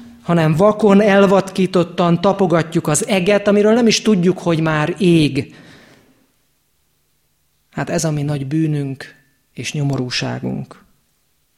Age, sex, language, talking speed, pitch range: 30-49, male, Hungarian, 110 wpm, 140-170 Hz